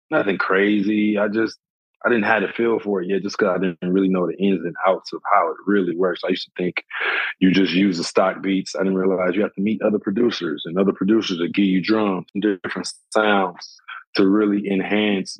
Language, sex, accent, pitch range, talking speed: English, male, American, 95-105 Hz, 230 wpm